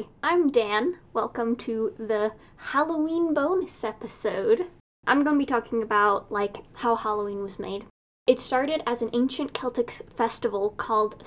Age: 10-29